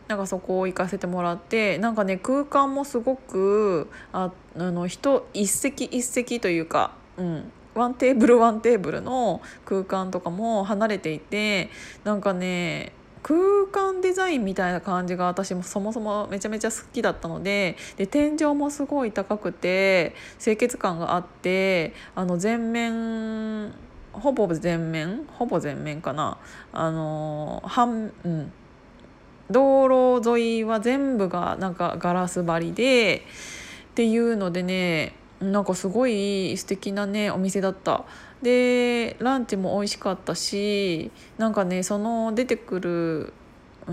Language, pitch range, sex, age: Japanese, 180-235 Hz, female, 20-39